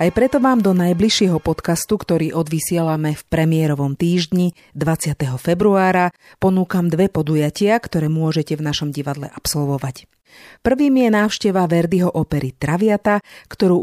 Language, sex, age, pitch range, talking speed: Slovak, female, 40-59, 150-195 Hz, 125 wpm